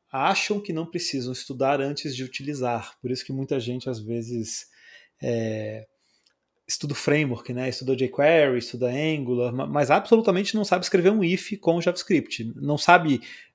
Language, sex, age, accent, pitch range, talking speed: Portuguese, male, 30-49, Brazilian, 125-175 Hz, 150 wpm